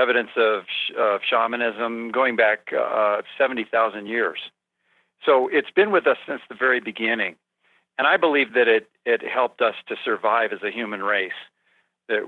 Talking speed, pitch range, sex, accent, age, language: 165 wpm, 115-140 Hz, male, American, 50-69, English